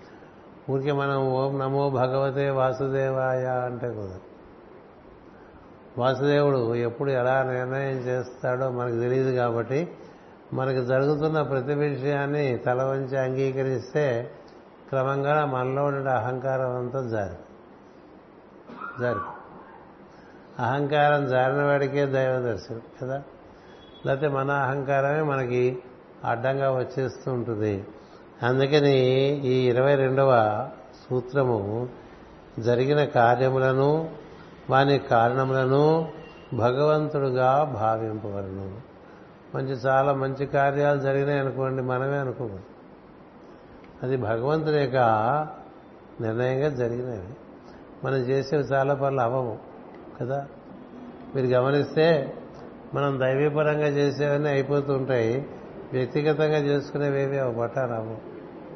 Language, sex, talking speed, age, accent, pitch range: Telugu, male, 85 wpm, 60-79, native, 125-140 Hz